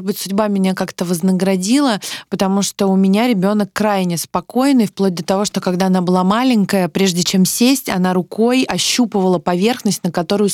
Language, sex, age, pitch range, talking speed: Russian, female, 20-39, 180-215 Hz, 170 wpm